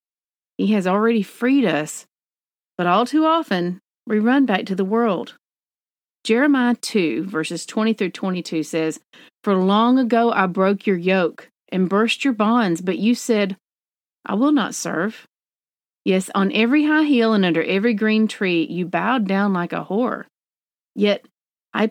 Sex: female